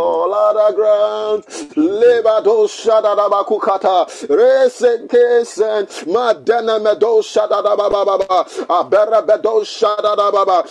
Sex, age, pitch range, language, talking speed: male, 30-49, 235-295 Hz, English, 130 wpm